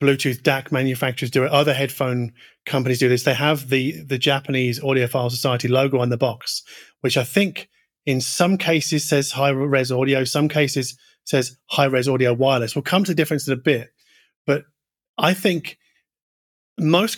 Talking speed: 170 wpm